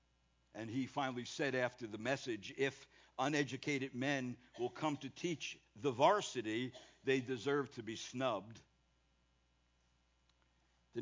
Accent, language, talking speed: American, English, 120 wpm